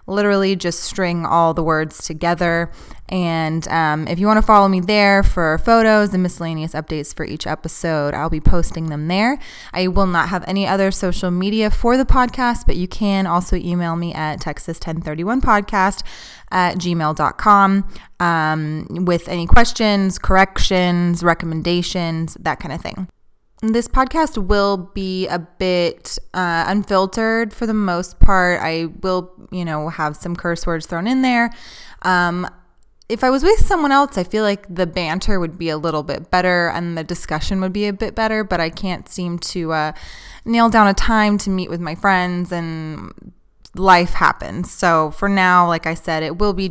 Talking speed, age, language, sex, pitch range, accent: 175 wpm, 20-39, English, female, 165-200 Hz, American